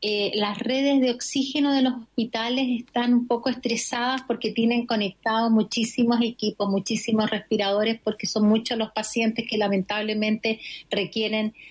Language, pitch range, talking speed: Spanish, 220-265 Hz, 140 wpm